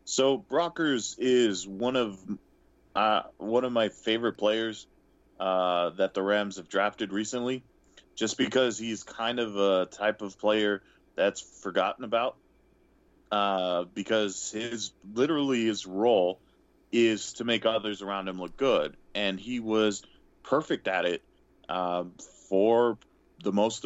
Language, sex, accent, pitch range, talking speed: English, male, American, 100-120 Hz, 135 wpm